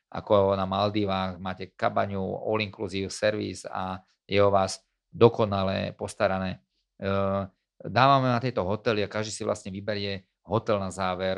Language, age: Slovak, 40-59